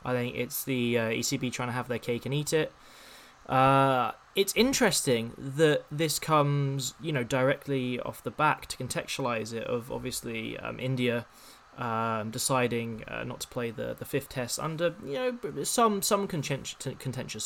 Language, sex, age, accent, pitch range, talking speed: English, male, 20-39, British, 120-140 Hz, 170 wpm